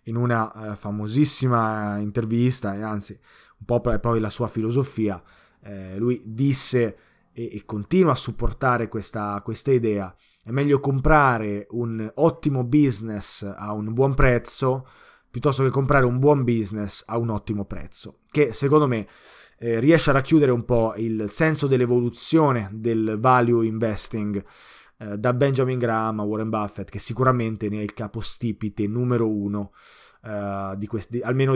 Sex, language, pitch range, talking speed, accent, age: male, Italian, 110-135 Hz, 130 wpm, native, 20-39